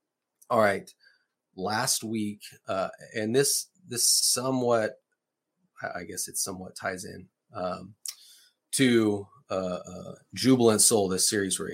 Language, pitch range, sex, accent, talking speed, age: English, 95-120 Hz, male, American, 125 wpm, 30-49